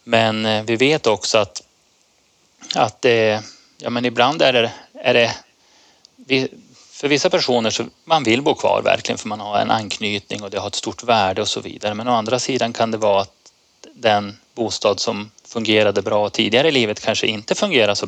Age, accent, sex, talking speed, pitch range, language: 30-49, native, male, 195 wpm, 105-125 Hz, Swedish